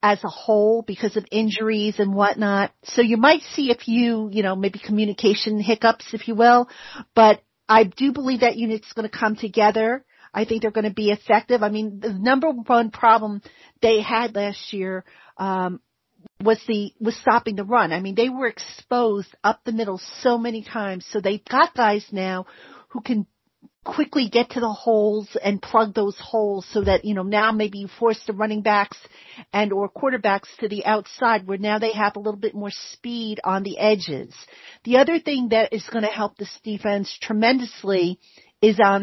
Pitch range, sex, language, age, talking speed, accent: 205-240 Hz, female, English, 40-59, 190 wpm, American